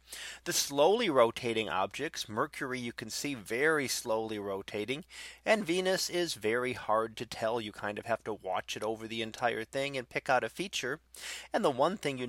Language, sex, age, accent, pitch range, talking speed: English, male, 30-49, American, 115-135 Hz, 190 wpm